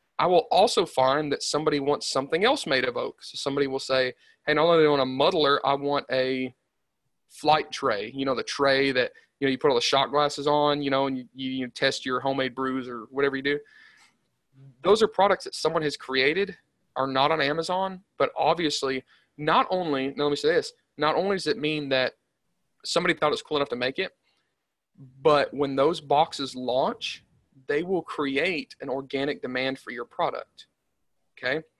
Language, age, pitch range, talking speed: English, 30-49, 130-160 Hz, 200 wpm